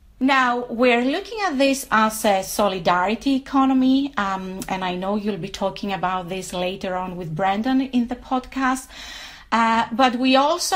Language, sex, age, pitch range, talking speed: English, female, 30-49, 195-255 Hz, 160 wpm